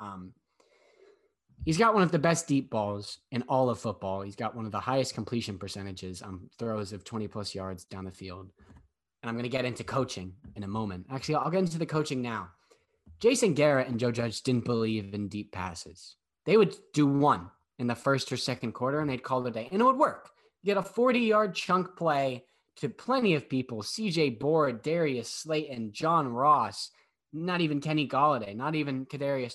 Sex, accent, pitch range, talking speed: male, American, 95-145 Hz, 200 wpm